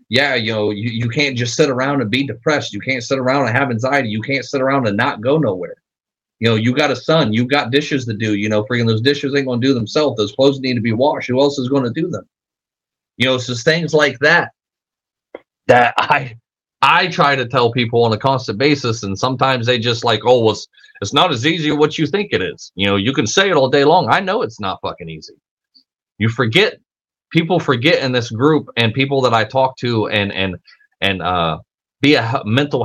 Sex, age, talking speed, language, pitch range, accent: male, 30-49, 235 wpm, English, 115-145 Hz, American